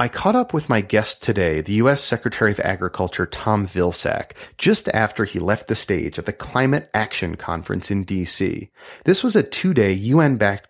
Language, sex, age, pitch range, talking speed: English, male, 30-49, 95-135 Hz, 180 wpm